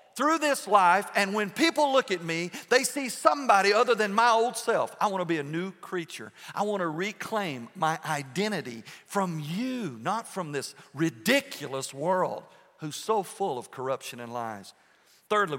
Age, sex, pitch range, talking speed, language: 50-69, male, 135-210 Hz, 175 wpm, English